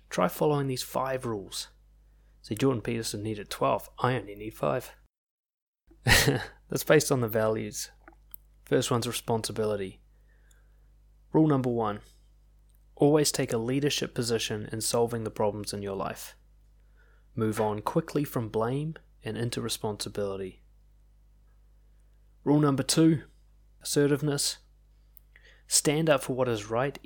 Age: 20-39